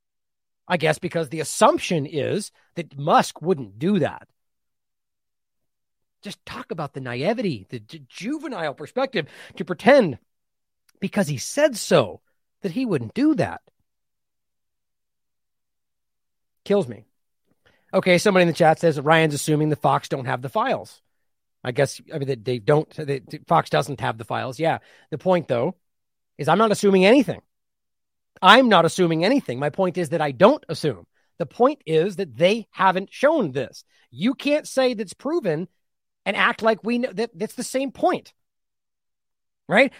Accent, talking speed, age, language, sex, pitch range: American, 155 wpm, 40-59, English, male, 160-255 Hz